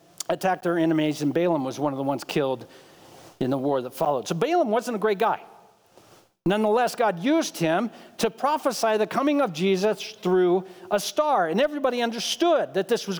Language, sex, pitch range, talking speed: English, male, 190-255 Hz, 185 wpm